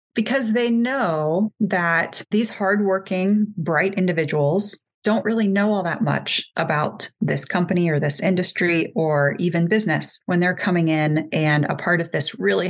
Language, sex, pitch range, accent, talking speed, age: English, female, 160-200 Hz, American, 155 wpm, 30-49